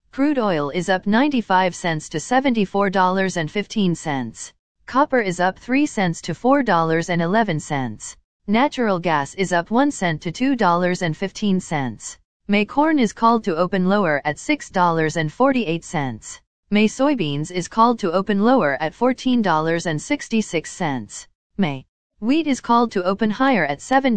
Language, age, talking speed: English, 40-59, 175 wpm